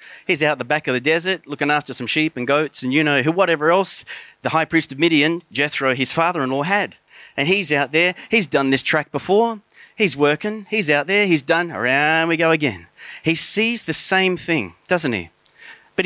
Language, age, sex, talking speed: English, 30-49, male, 210 wpm